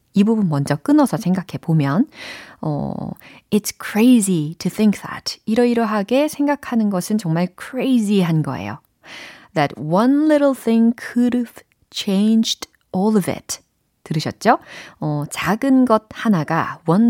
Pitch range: 165-245 Hz